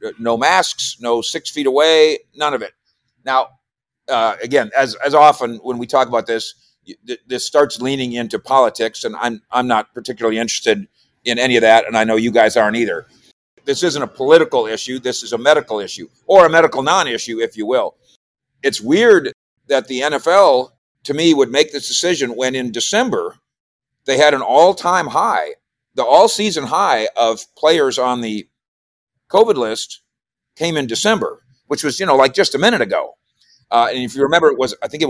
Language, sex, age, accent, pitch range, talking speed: English, male, 50-69, American, 120-205 Hz, 190 wpm